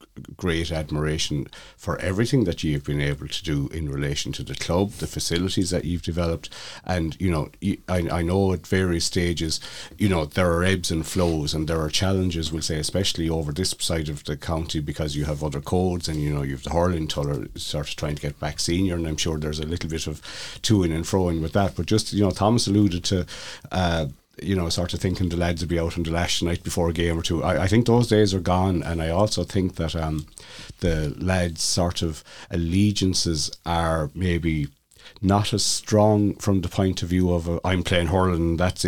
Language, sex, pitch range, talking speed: English, male, 80-100 Hz, 225 wpm